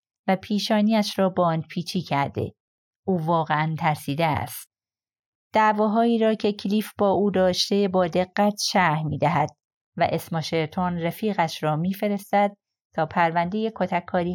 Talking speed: 125 wpm